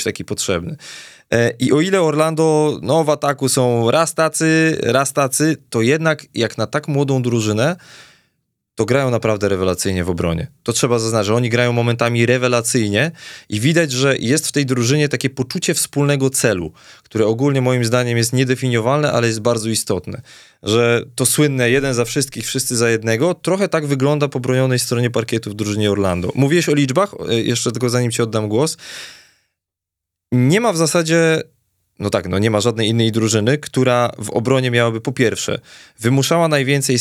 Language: Polish